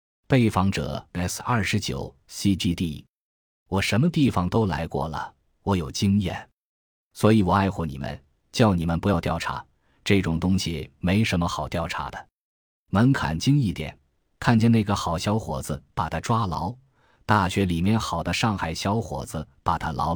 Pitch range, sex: 85-110 Hz, male